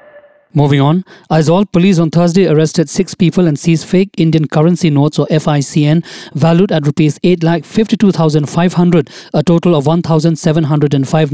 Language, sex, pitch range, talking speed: English, male, 150-175 Hz, 130 wpm